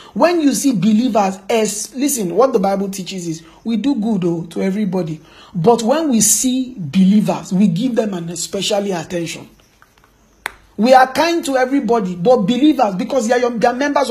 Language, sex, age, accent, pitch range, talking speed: English, male, 50-69, Nigerian, 180-250 Hz, 160 wpm